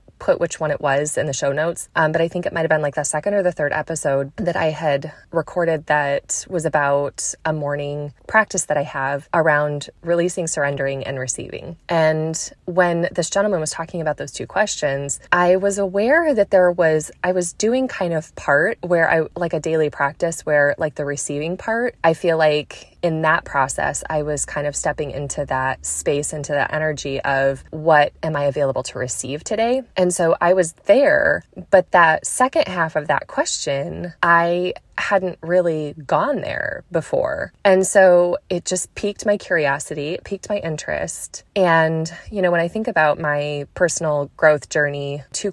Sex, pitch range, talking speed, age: female, 145-175 Hz, 185 wpm, 20-39